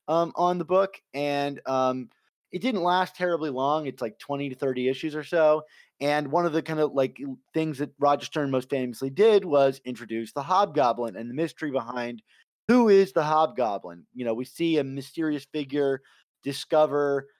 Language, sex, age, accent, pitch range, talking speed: English, male, 30-49, American, 125-160 Hz, 185 wpm